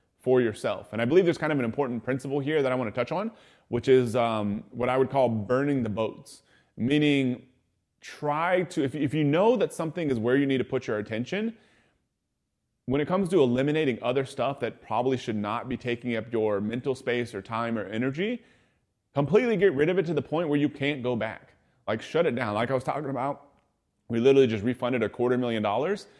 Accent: American